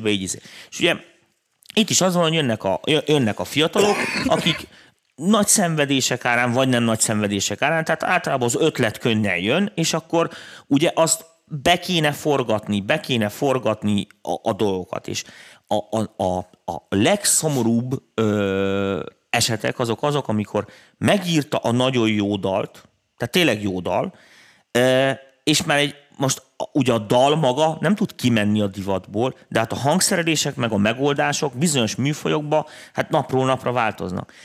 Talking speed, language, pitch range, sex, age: 145 wpm, Hungarian, 110-150 Hz, male, 30-49